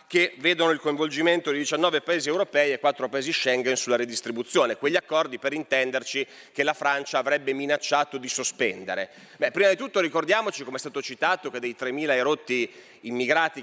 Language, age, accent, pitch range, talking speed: Italian, 30-49, native, 140-235 Hz, 165 wpm